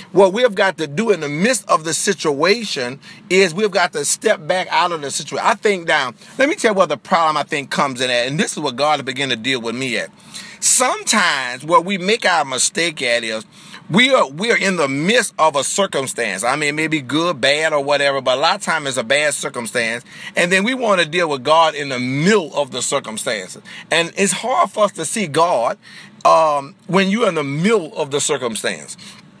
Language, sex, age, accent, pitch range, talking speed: English, male, 40-59, American, 150-205 Hz, 235 wpm